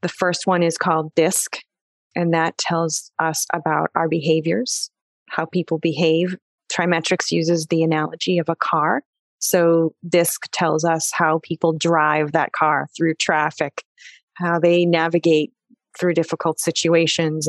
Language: English